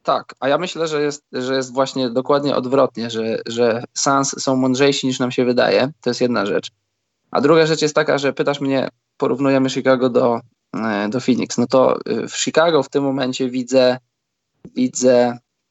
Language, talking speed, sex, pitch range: Polish, 175 wpm, male, 125-140 Hz